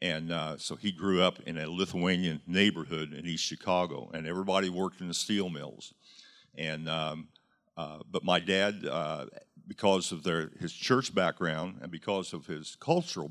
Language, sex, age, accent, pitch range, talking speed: English, male, 50-69, American, 85-110 Hz, 170 wpm